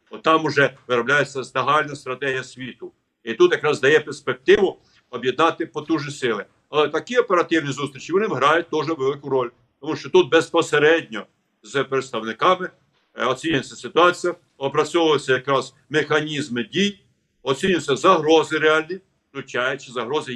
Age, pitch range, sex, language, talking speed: 50-69, 130-165 Hz, male, Ukrainian, 120 wpm